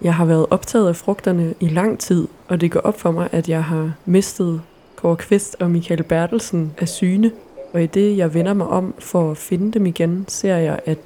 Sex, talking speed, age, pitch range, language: female, 220 wpm, 20-39, 170-195 Hz, Danish